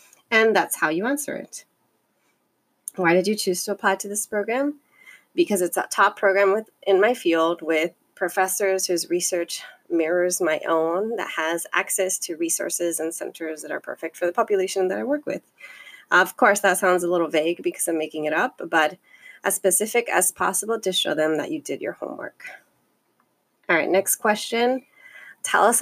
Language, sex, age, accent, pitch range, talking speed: English, female, 30-49, American, 175-235 Hz, 180 wpm